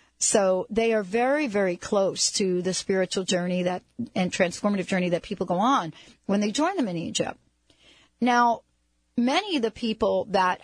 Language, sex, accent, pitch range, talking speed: English, female, American, 180-245 Hz, 170 wpm